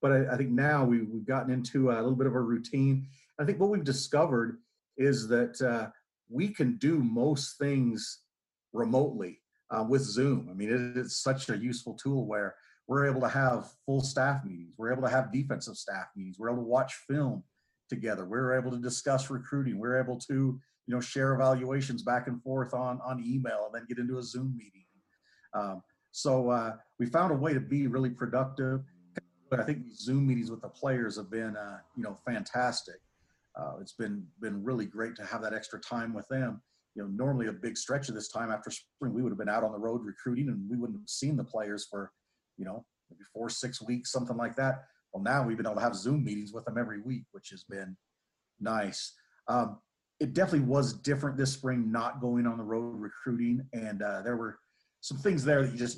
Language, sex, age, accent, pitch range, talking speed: English, male, 40-59, American, 115-135 Hz, 210 wpm